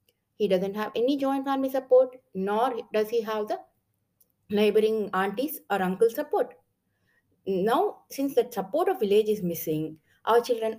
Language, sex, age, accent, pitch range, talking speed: English, female, 20-39, Indian, 180-255 Hz, 150 wpm